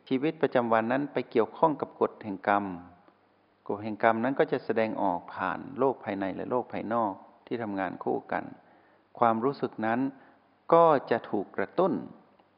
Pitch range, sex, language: 100-135 Hz, male, Thai